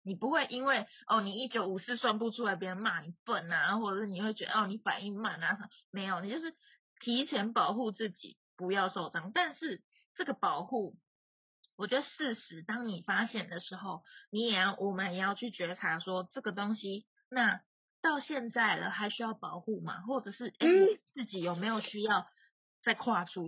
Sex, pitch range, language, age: female, 195-260 Hz, Chinese, 20-39